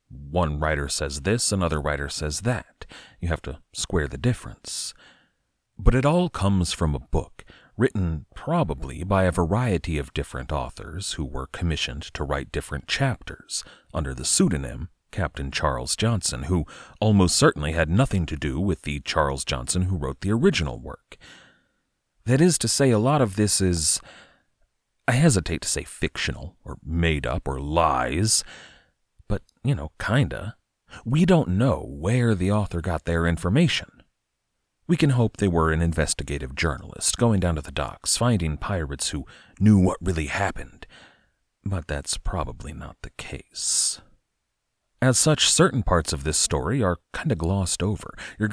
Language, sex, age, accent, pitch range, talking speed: English, male, 40-59, American, 75-105 Hz, 160 wpm